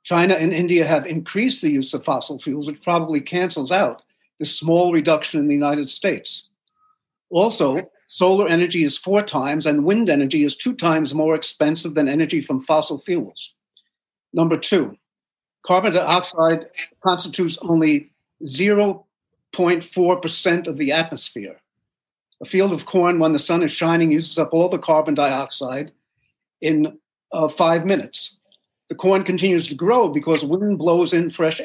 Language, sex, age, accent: English, male, 50-69, American